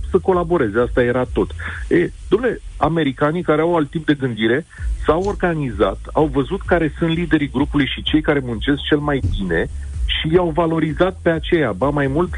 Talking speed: 170 wpm